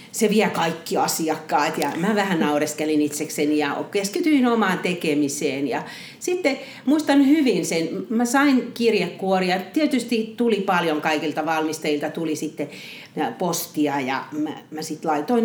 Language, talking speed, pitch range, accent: Finnish, 130 wpm, 155-230 Hz, native